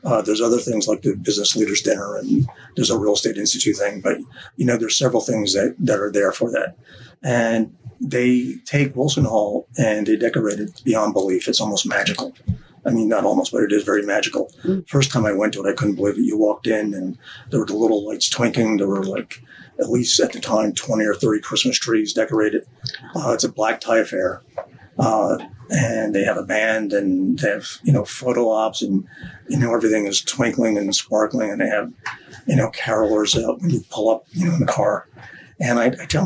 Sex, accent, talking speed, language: male, American, 220 wpm, English